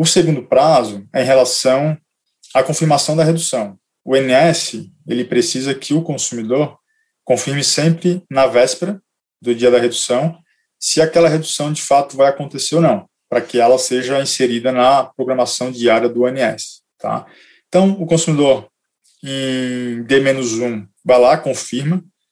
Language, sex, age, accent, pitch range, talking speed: Portuguese, male, 20-39, Brazilian, 125-160 Hz, 135 wpm